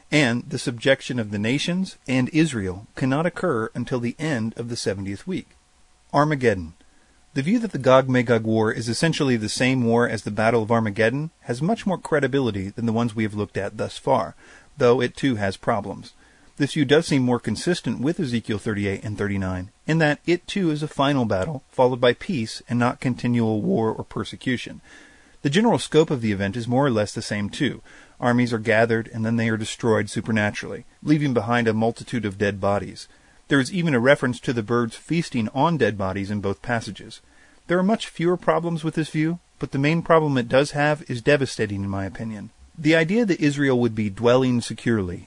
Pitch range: 110-145 Hz